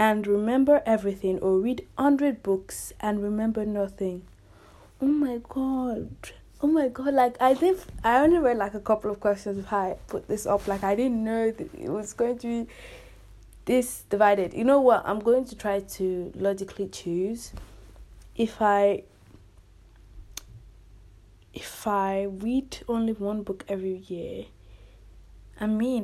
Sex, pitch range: female, 185-235 Hz